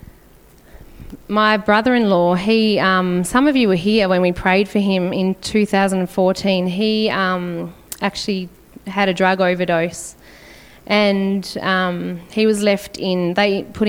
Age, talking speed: 20-39, 130 wpm